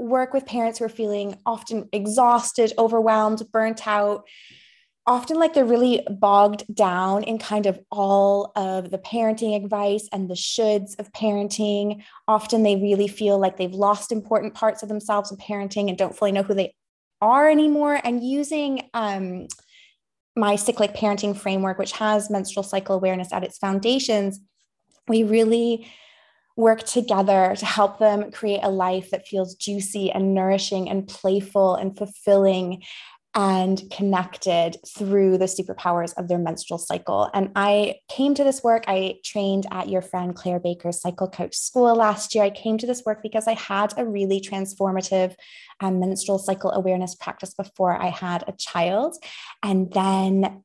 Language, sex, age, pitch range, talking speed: English, female, 20-39, 195-225 Hz, 160 wpm